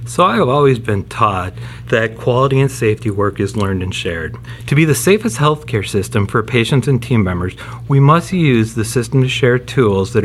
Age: 30-49